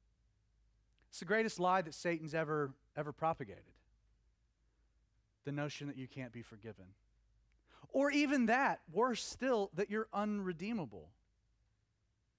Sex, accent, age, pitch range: male, American, 40-59, 110-155 Hz